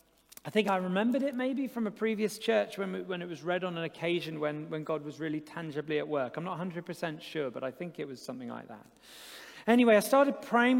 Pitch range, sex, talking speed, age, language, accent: 165-220 Hz, male, 235 wpm, 40-59, English, British